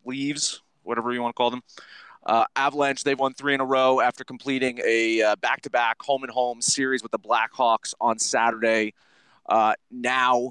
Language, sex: English, male